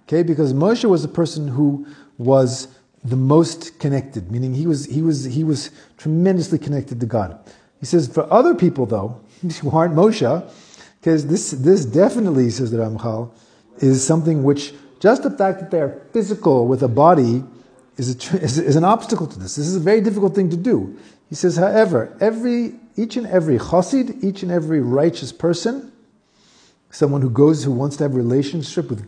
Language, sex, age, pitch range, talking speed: English, male, 40-59, 130-175 Hz, 185 wpm